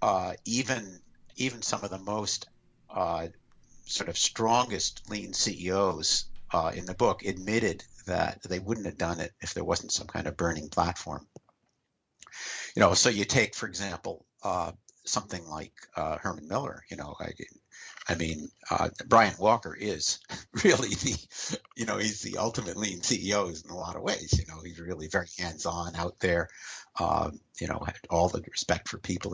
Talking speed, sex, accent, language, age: 175 wpm, male, American, English, 60-79